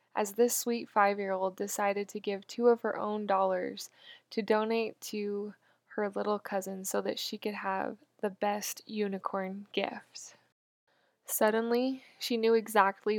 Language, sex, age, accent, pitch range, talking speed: English, female, 10-29, American, 200-230 Hz, 140 wpm